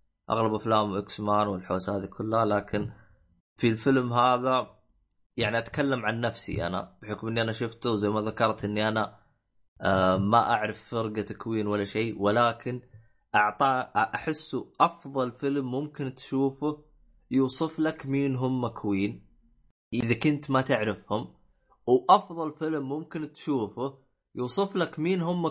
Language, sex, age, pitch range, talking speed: Arabic, male, 20-39, 105-135 Hz, 130 wpm